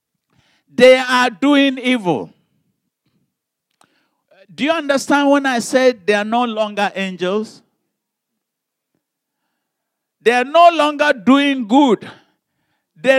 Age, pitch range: 50-69, 220-290 Hz